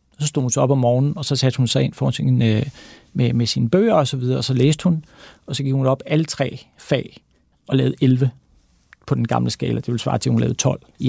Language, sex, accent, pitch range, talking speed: Danish, male, native, 130-165 Hz, 270 wpm